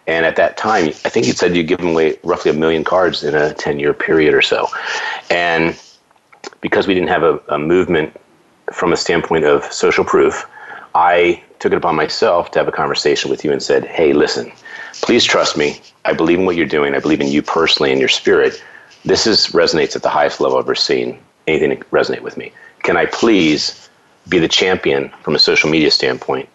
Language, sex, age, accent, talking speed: English, male, 40-59, American, 210 wpm